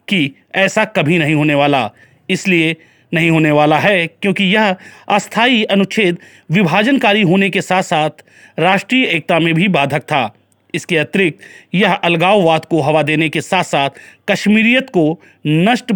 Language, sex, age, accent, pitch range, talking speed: Hindi, male, 30-49, native, 155-190 Hz, 145 wpm